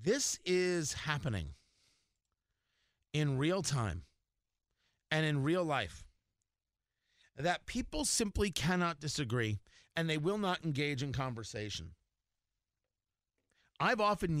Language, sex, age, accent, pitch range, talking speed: English, male, 40-59, American, 115-170 Hz, 100 wpm